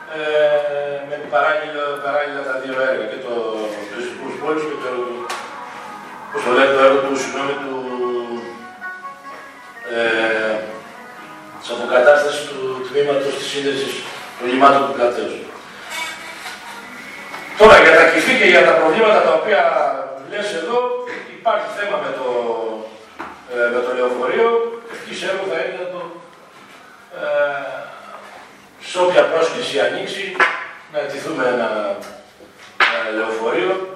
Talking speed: 115 wpm